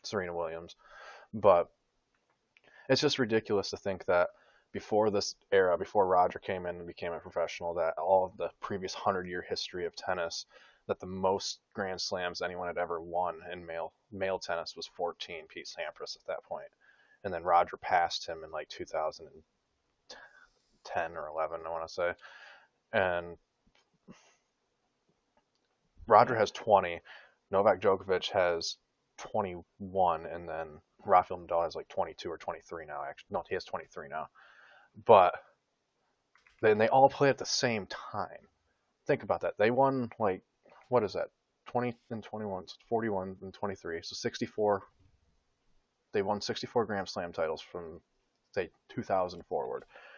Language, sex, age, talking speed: English, male, 20-39, 145 wpm